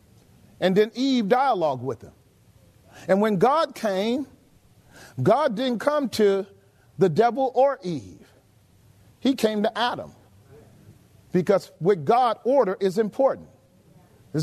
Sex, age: male, 40-59